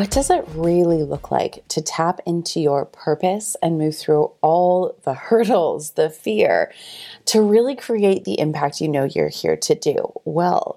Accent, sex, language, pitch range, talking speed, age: American, female, English, 165-220 Hz, 175 wpm, 30-49